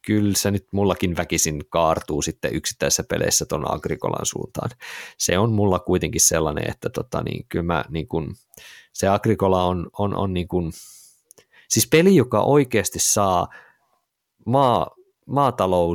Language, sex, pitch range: Finnish, male, 85-105 Hz